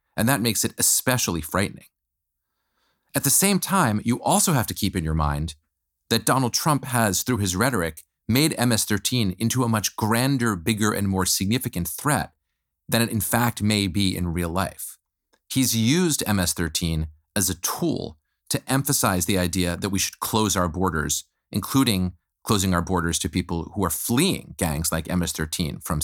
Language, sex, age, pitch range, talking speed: English, male, 40-59, 85-120 Hz, 170 wpm